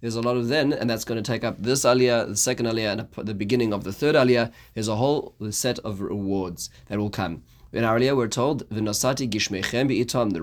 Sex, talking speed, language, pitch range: male, 220 wpm, English, 105-130 Hz